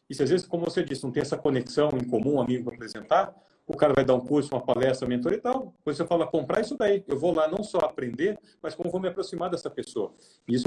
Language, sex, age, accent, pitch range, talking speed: Portuguese, male, 40-59, Brazilian, 130-170 Hz, 270 wpm